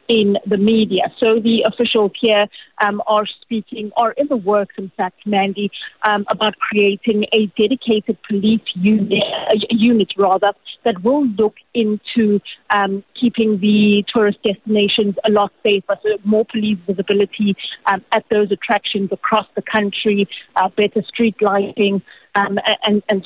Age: 30-49